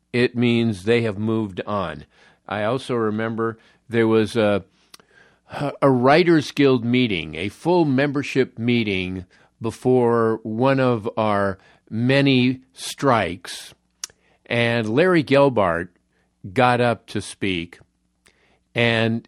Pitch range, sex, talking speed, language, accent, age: 105-135 Hz, male, 105 wpm, English, American, 50-69